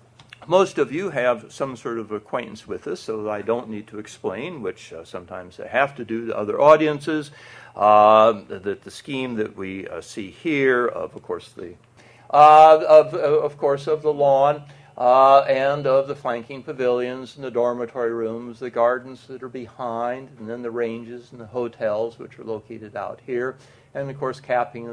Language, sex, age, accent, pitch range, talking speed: English, male, 60-79, American, 105-135 Hz, 185 wpm